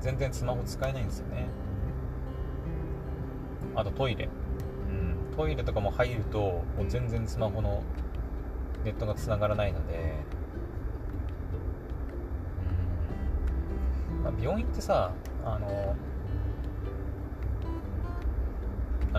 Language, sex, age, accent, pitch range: Japanese, male, 30-49, native, 75-95 Hz